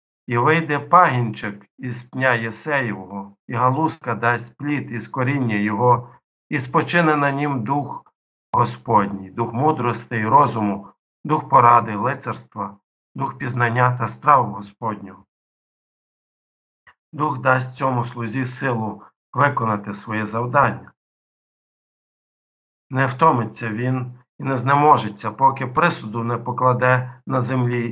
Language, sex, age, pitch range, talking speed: Ukrainian, male, 50-69, 115-135 Hz, 110 wpm